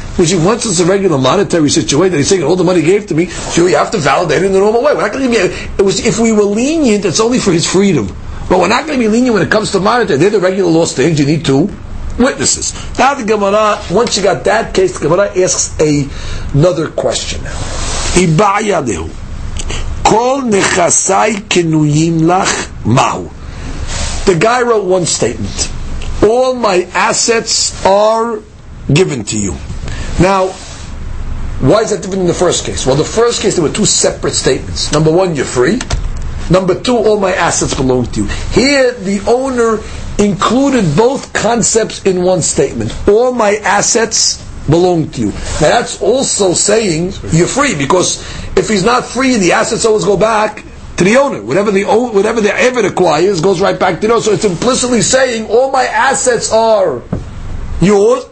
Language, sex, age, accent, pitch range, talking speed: English, male, 60-79, American, 165-230 Hz, 175 wpm